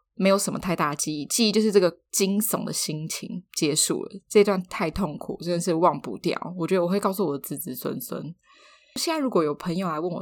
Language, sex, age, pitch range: Chinese, female, 10-29, 155-210 Hz